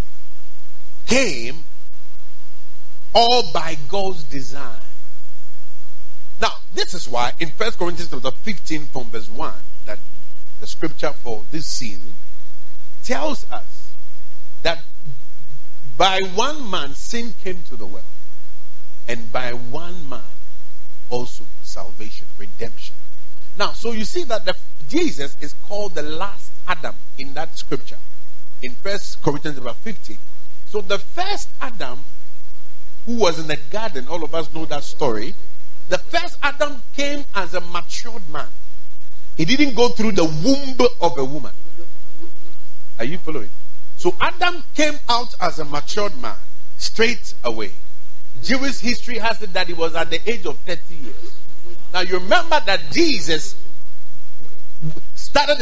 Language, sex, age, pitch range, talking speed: English, male, 40-59, 140-230 Hz, 135 wpm